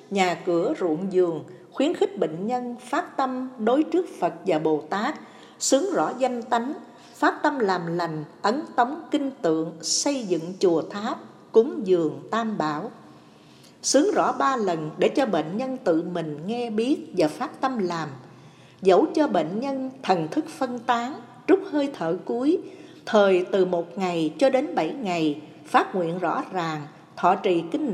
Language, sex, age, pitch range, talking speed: Vietnamese, female, 60-79, 165-270 Hz, 170 wpm